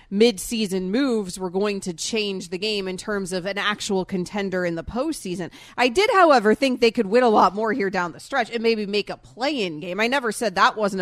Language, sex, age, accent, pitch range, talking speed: English, female, 30-49, American, 185-230 Hz, 230 wpm